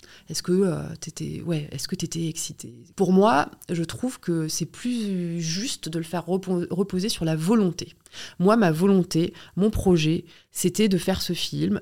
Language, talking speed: French, 160 wpm